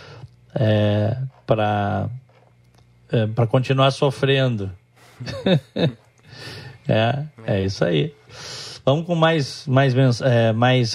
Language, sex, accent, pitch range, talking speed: Portuguese, male, Brazilian, 120-150 Hz, 90 wpm